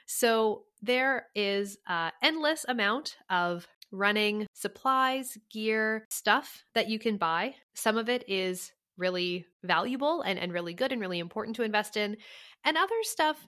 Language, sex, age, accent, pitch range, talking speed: English, female, 20-39, American, 175-230 Hz, 150 wpm